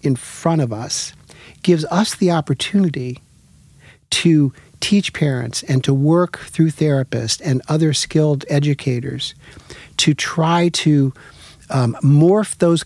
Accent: American